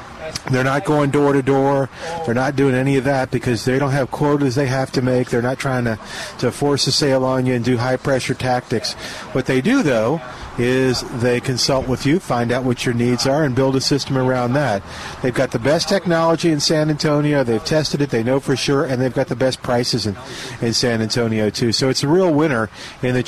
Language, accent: English, American